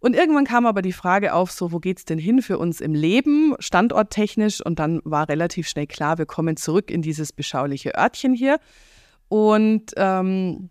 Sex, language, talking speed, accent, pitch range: female, German, 185 wpm, German, 160-215 Hz